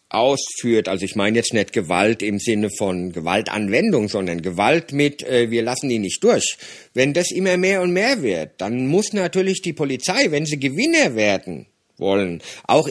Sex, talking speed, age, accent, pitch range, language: male, 175 wpm, 50-69, German, 110-145 Hz, English